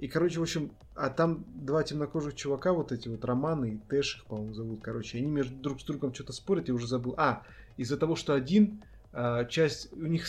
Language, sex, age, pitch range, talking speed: Russian, male, 20-39, 120-150 Hz, 215 wpm